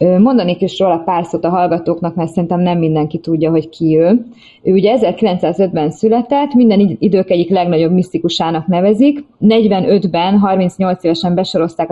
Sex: female